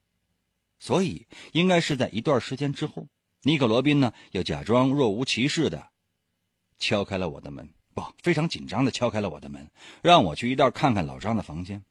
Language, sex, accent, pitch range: Chinese, male, native, 85-125 Hz